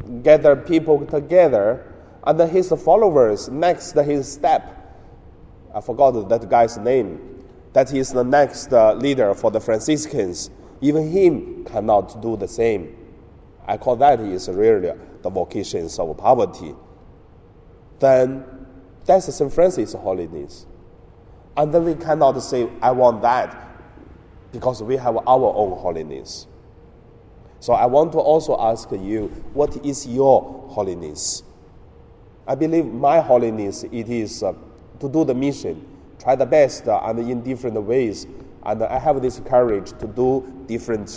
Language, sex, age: Chinese, male, 30-49